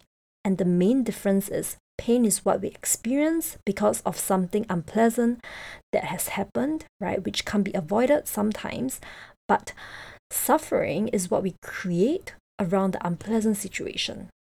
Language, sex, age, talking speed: English, female, 20-39, 135 wpm